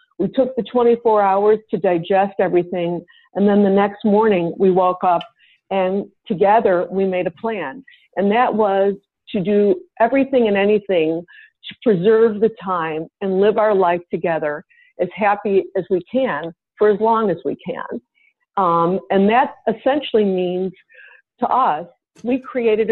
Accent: American